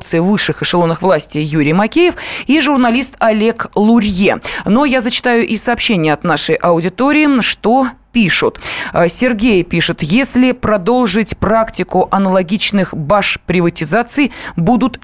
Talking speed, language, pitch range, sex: 110 wpm, Russian, 175-235 Hz, female